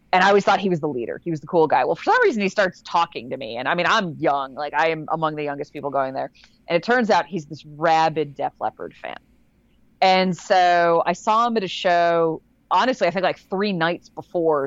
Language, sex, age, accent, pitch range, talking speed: English, female, 30-49, American, 165-225 Hz, 250 wpm